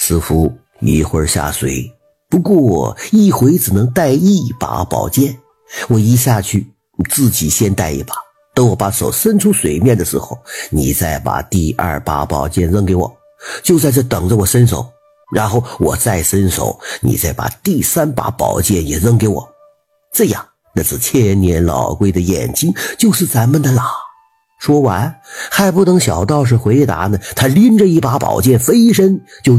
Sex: male